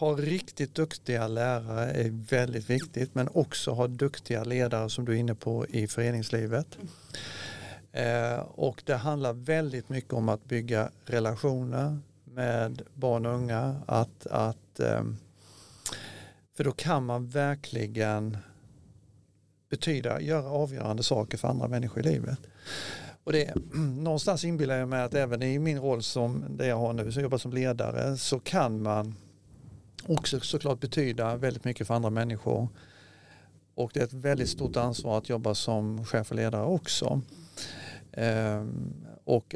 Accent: native